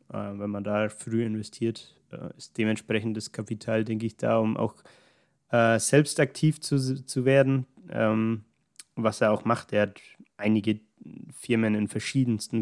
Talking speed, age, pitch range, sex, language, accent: 155 wpm, 20-39, 105-120 Hz, male, German, German